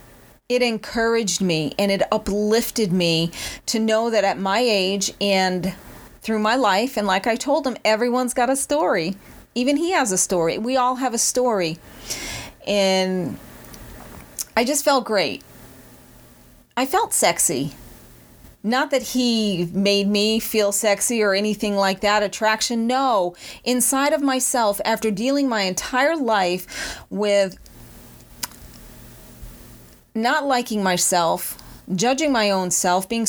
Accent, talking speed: American, 135 wpm